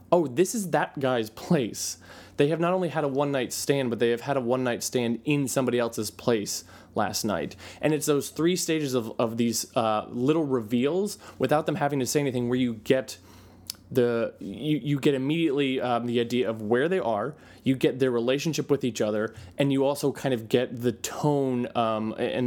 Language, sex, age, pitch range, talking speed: English, male, 20-39, 110-135 Hz, 205 wpm